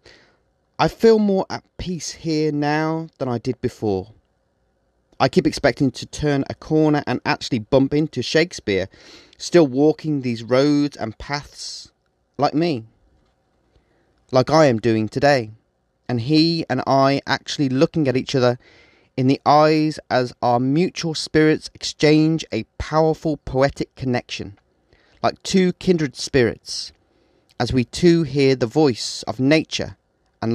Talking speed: 140 wpm